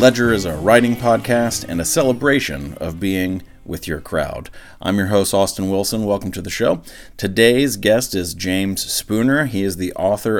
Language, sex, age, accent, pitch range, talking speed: English, male, 40-59, American, 85-100 Hz, 180 wpm